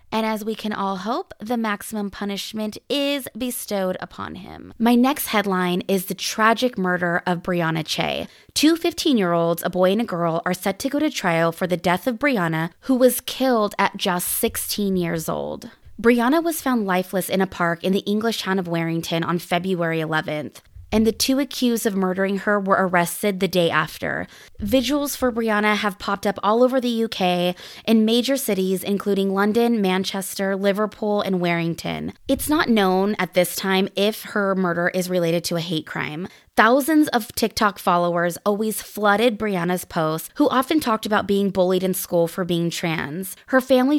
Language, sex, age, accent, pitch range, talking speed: English, female, 20-39, American, 180-235 Hz, 180 wpm